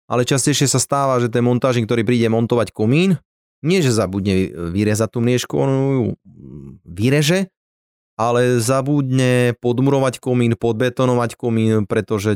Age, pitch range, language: 20-39, 100-125 Hz, Slovak